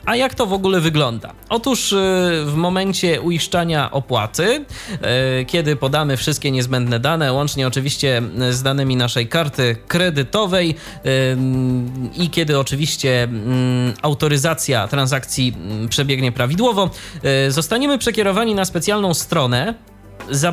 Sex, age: male, 20-39